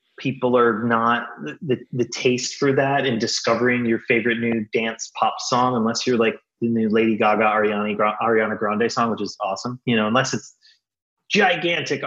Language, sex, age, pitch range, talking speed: English, male, 30-49, 105-130 Hz, 170 wpm